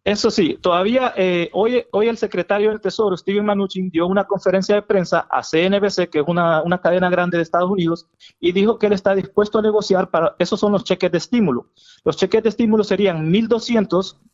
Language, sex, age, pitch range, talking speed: Spanish, male, 30-49, 170-210 Hz, 205 wpm